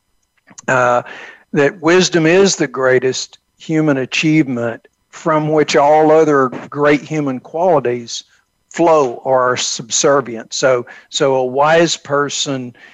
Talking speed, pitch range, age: 110 wpm, 125-155 Hz, 60-79